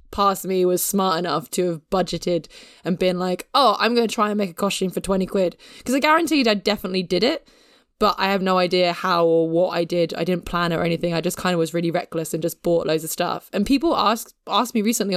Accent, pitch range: British, 165-220 Hz